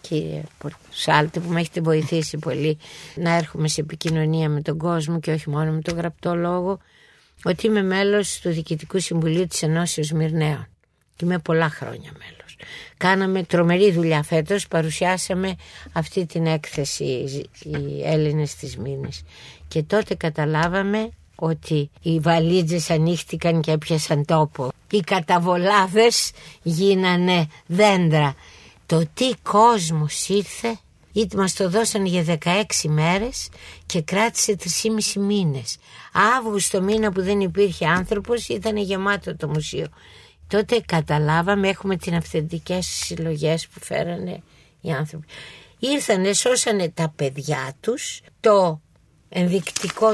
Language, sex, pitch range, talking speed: Greek, female, 155-195 Hz, 120 wpm